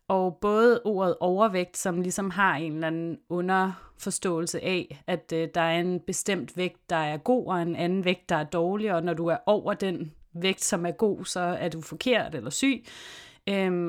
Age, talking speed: 30-49, 200 wpm